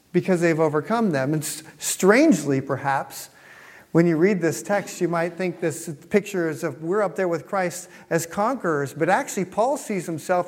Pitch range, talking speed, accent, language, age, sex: 165-220 Hz, 180 wpm, American, English, 50-69, male